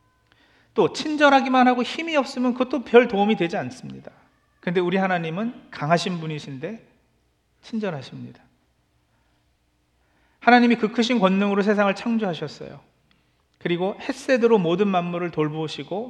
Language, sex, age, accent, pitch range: Korean, male, 40-59, native, 155-230 Hz